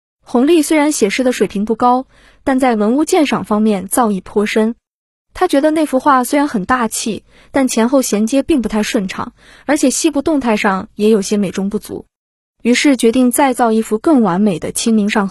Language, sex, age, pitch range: Chinese, female, 20-39, 210-265 Hz